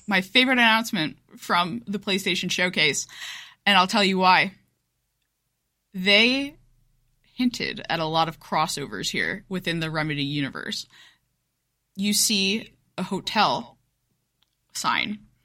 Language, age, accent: English, 20-39, American